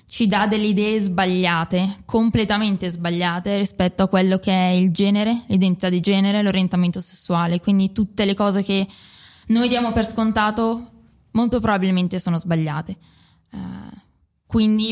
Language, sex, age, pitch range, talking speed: Italian, female, 20-39, 185-215 Hz, 135 wpm